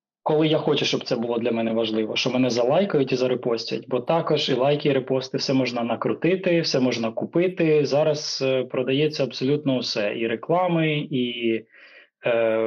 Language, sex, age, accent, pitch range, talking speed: Ukrainian, male, 20-39, native, 125-155 Hz, 165 wpm